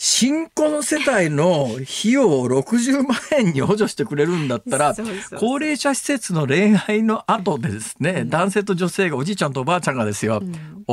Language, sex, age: Japanese, male, 40-59